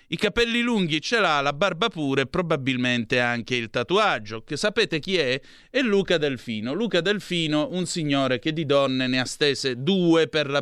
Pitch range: 125-170 Hz